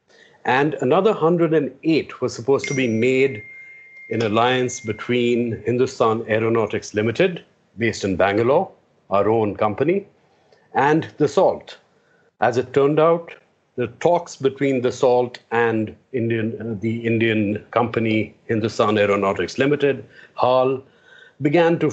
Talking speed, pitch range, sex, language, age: 120 wpm, 115-150 Hz, male, English, 50-69